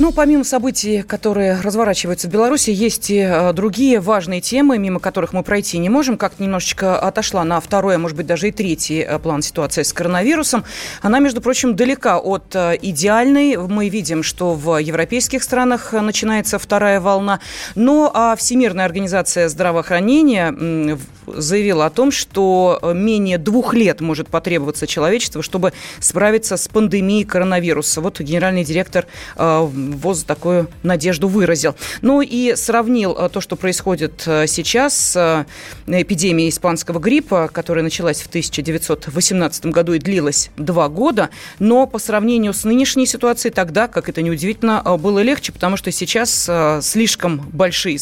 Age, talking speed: 30-49, 135 wpm